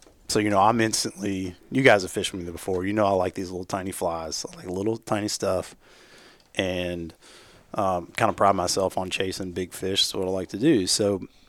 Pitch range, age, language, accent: 95-115 Hz, 30-49, English, American